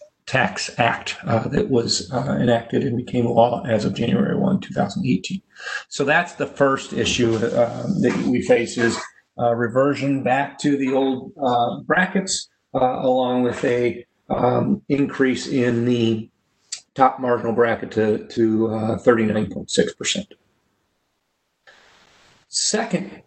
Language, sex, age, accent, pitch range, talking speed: English, male, 40-59, American, 115-135 Hz, 130 wpm